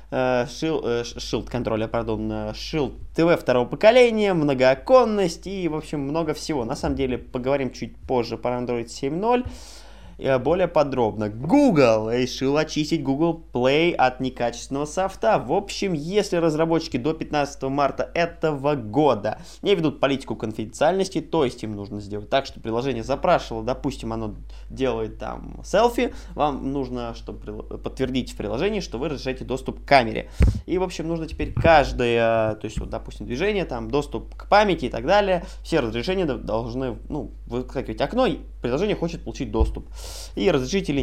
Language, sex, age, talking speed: Russian, male, 20-39, 145 wpm